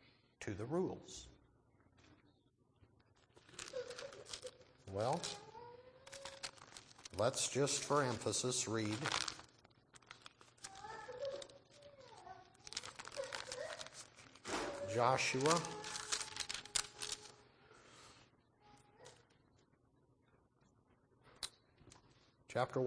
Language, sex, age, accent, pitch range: English, male, 60-79, American, 125-190 Hz